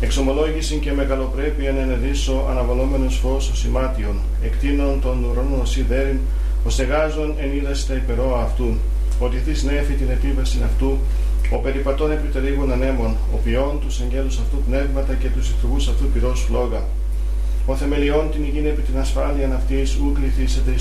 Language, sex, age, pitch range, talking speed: Greek, male, 40-59, 115-140 Hz, 145 wpm